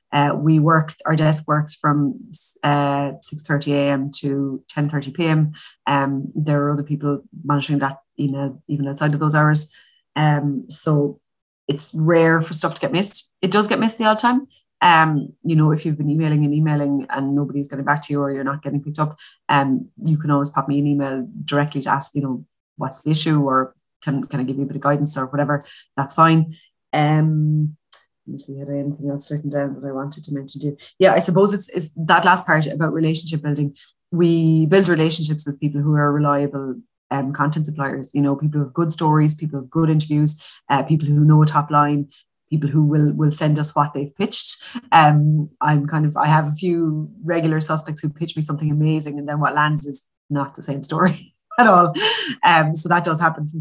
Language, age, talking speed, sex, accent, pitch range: English, 20-39, 215 wpm, female, Irish, 145-160 Hz